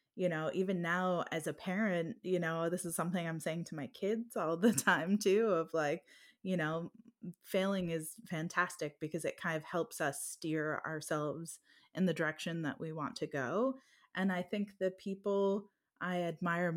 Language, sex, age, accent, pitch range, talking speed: French, female, 20-39, American, 165-200 Hz, 185 wpm